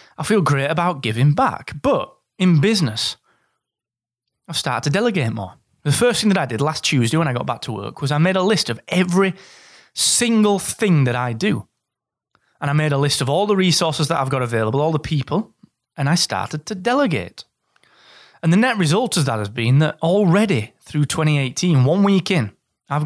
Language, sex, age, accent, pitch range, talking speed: English, male, 30-49, British, 125-180 Hz, 200 wpm